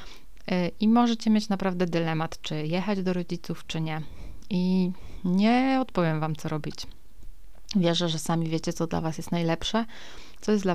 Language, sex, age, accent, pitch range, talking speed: Polish, female, 30-49, native, 165-185 Hz, 160 wpm